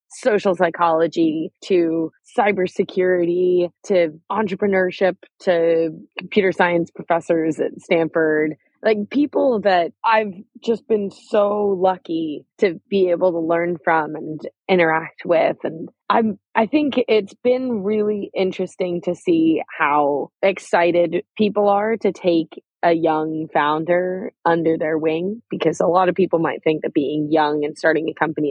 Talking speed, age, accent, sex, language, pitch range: 135 wpm, 20-39, American, female, English, 160-200 Hz